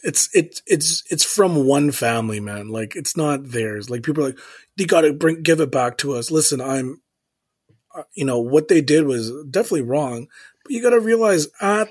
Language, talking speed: English, 205 wpm